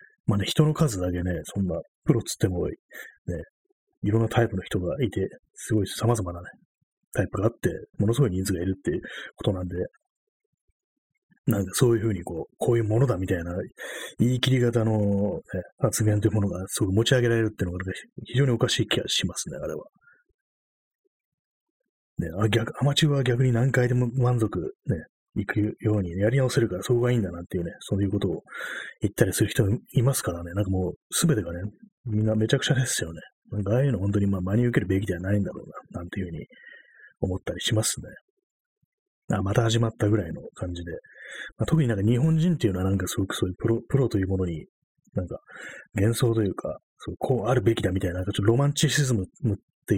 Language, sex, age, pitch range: Japanese, male, 30-49, 100-130 Hz